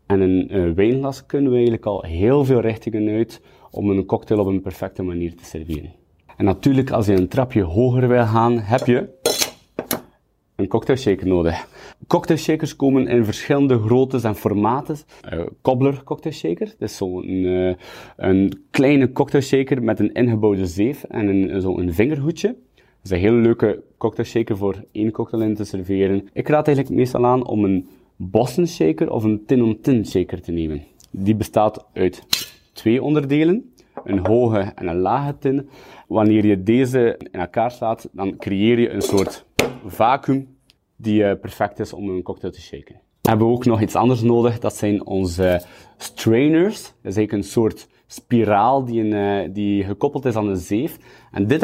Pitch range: 100-130 Hz